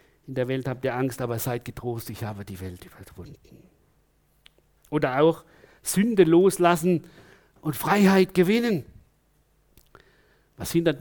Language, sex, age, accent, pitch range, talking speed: German, male, 50-69, German, 120-160 Hz, 125 wpm